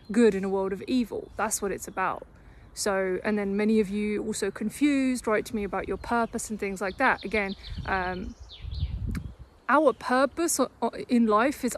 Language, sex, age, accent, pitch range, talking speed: English, female, 30-49, British, 195-235 Hz, 180 wpm